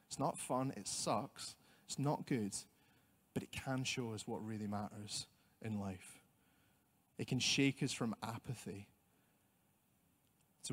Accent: British